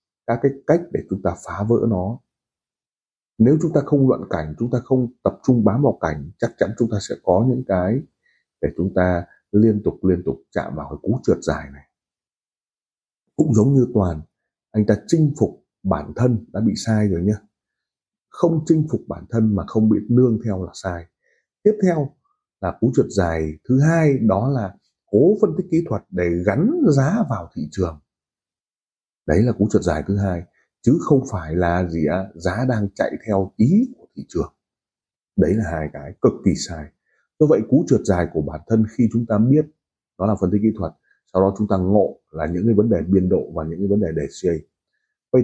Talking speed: 210 wpm